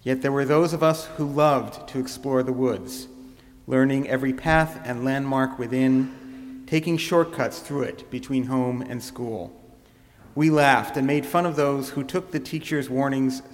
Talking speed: 170 wpm